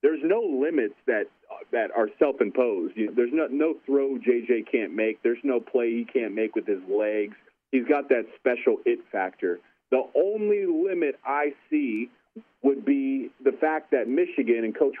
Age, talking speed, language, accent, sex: 30-49, 175 wpm, English, American, male